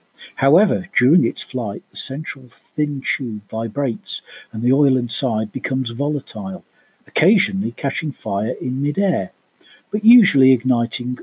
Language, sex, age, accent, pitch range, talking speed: English, male, 50-69, British, 115-160 Hz, 125 wpm